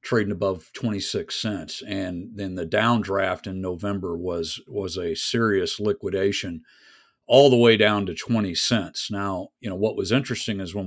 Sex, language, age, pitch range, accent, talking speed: male, English, 50-69, 95-115 Hz, American, 170 wpm